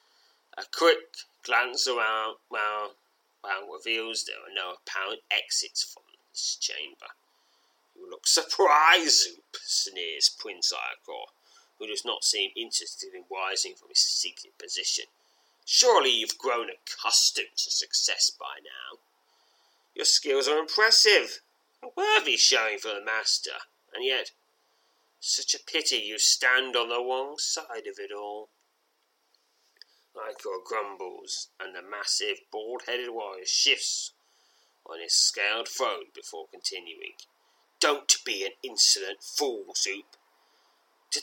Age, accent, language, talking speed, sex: 30-49, British, English, 125 wpm, male